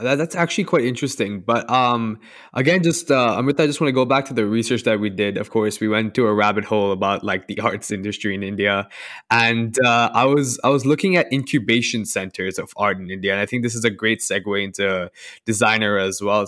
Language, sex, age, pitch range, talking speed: English, male, 20-39, 105-125 Hz, 230 wpm